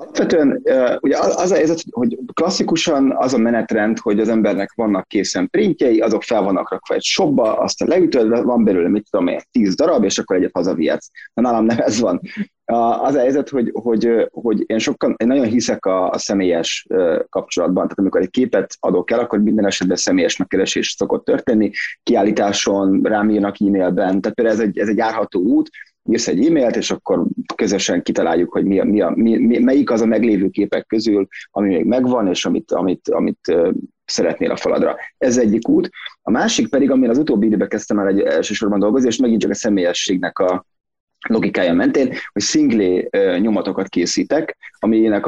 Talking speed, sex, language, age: 185 wpm, male, Hungarian, 30-49